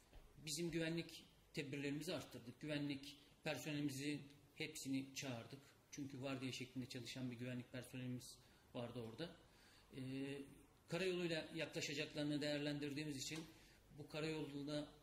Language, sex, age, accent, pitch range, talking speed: Turkish, male, 40-59, native, 135-155 Hz, 100 wpm